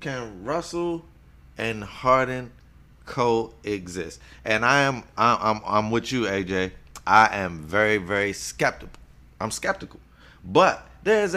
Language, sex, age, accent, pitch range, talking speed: English, male, 30-49, American, 85-125 Hz, 125 wpm